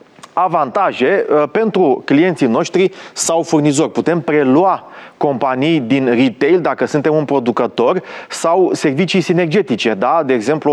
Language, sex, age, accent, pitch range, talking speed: Romanian, male, 30-49, native, 135-175 Hz, 110 wpm